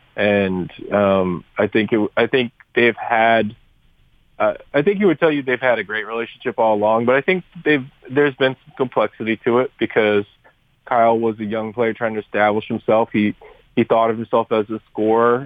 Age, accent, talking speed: 20-39, American, 200 wpm